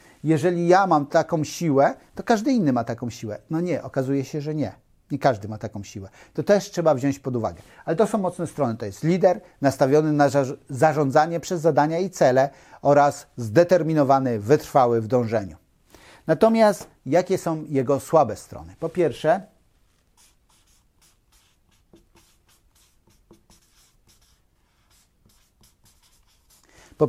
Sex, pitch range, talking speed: male, 130-170 Hz, 125 wpm